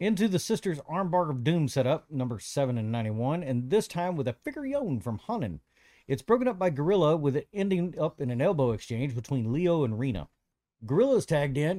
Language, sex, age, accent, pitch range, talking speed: English, male, 40-59, American, 125-175 Hz, 205 wpm